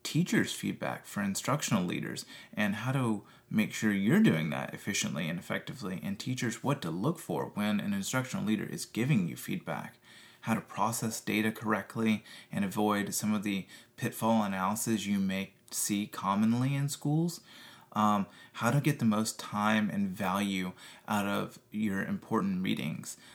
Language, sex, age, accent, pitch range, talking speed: English, male, 30-49, American, 105-130 Hz, 160 wpm